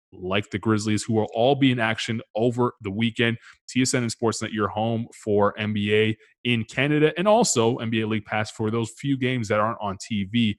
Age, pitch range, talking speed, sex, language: 20-39, 100-120 Hz, 195 wpm, male, English